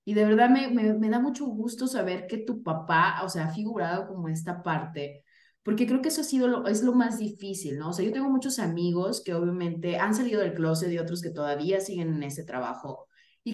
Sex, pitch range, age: female, 165-215 Hz, 20-39